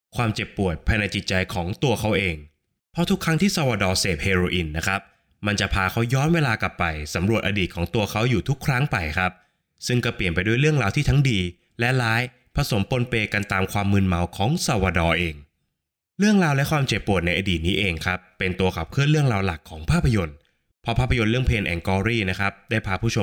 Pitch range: 90-120 Hz